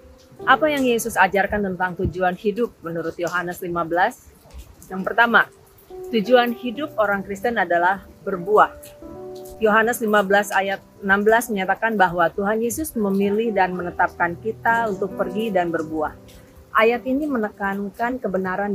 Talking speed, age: 120 wpm, 30-49